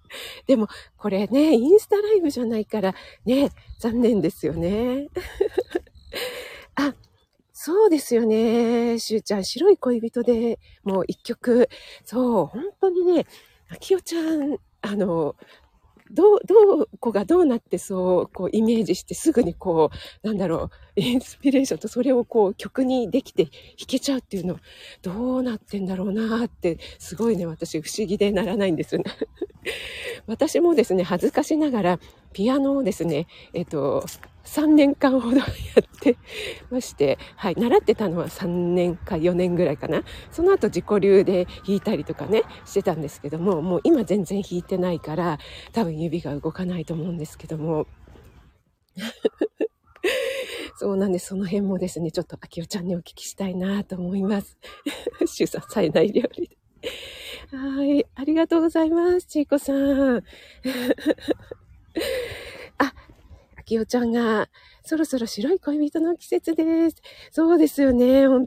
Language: Japanese